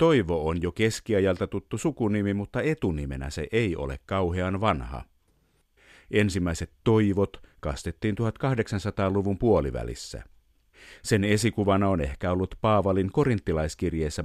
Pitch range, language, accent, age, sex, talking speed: 80-110 Hz, Finnish, native, 50-69, male, 105 wpm